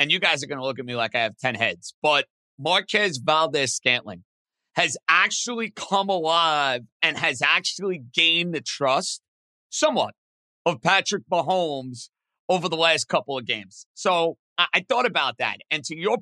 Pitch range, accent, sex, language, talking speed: 145-200 Hz, American, male, English, 170 wpm